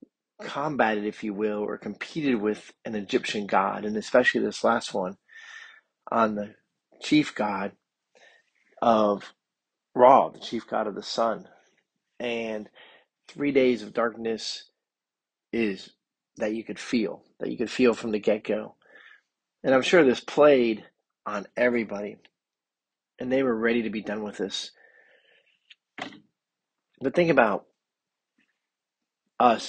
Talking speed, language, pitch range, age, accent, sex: 130 wpm, English, 110-125 Hz, 40-59, American, male